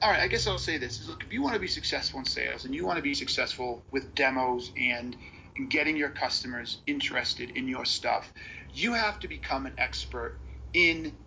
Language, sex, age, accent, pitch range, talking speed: Portuguese, male, 40-59, American, 130-200 Hz, 220 wpm